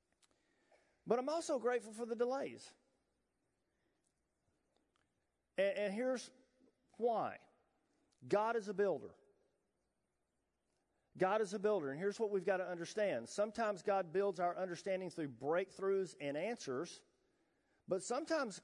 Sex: male